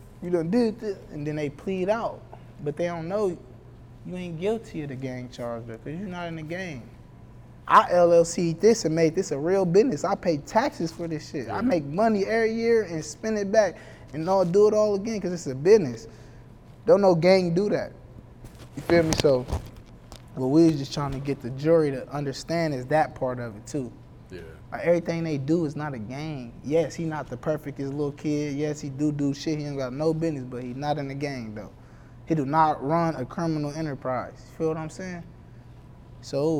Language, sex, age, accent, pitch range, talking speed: English, male, 20-39, American, 130-165 Hz, 220 wpm